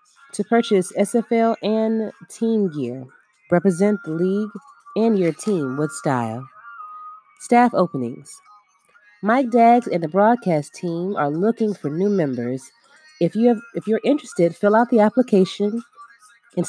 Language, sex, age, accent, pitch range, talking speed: English, female, 30-49, American, 165-230 Hz, 130 wpm